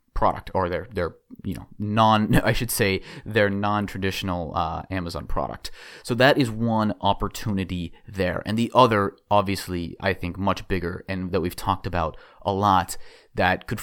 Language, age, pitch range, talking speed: English, 30-49, 90-110 Hz, 170 wpm